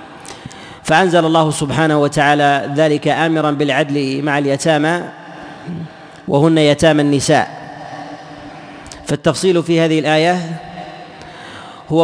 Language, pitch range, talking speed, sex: Arabic, 150-160 Hz, 85 wpm, male